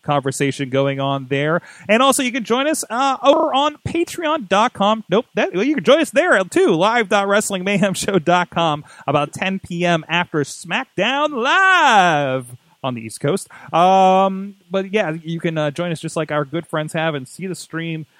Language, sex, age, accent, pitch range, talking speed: English, male, 30-49, American, 145-200 Hz, 170 wpm